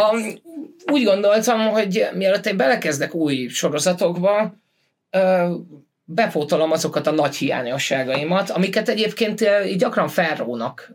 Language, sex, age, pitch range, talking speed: Hungarian, male, 20-39, 140-195 Hz, 100 wpm